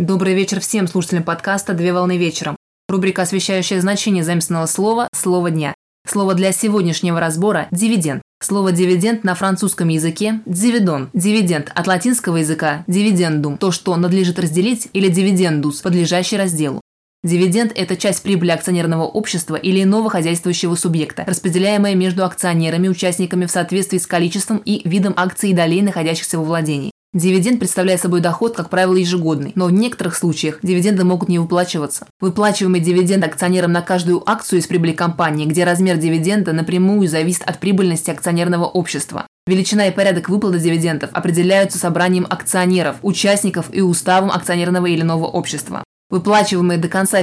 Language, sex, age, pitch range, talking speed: Russian, female, 20-39, 170-195 Hz, 150 wpm